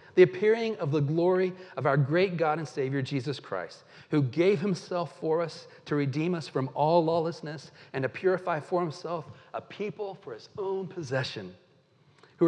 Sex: male